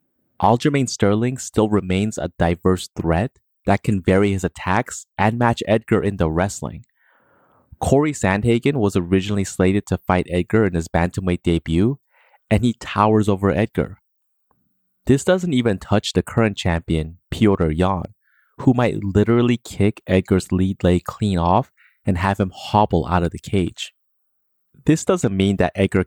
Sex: male